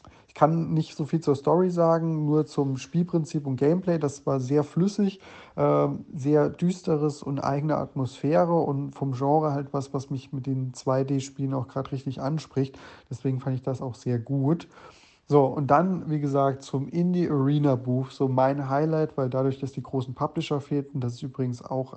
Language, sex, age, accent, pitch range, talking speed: German, male, 30-49, German, 130-145 Hz, 185 wpm